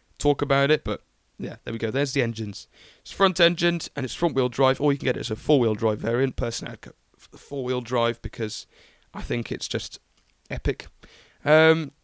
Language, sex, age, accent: English, male, 20-39, British